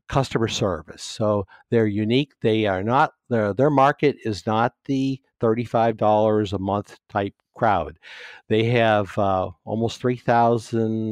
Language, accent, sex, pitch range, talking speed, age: English, American, male, 100-120 Hz, 145 wpm, 60-79